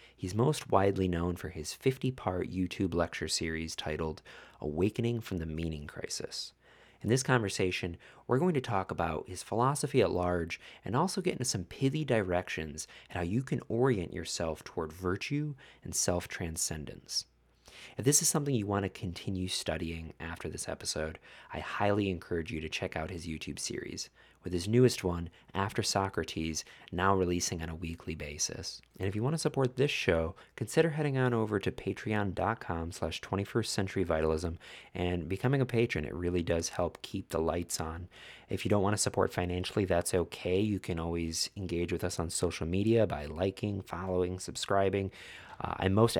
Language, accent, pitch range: English, American, 80-100 Hz